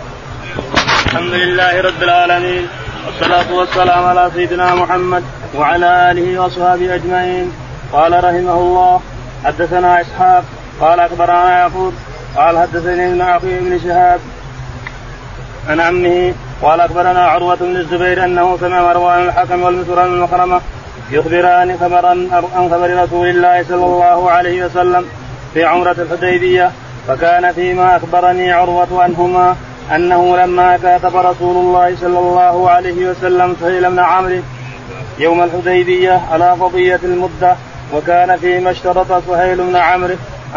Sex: male